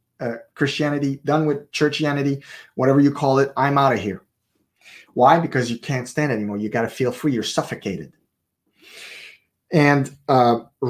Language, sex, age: English, male, 30-49